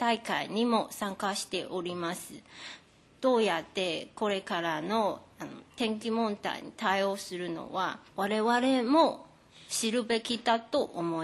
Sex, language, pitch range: female, Japanese, 190-245 Hz